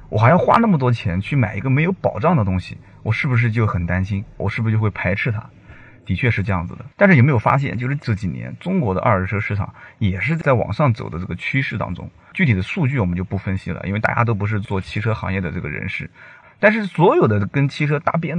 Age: 30-49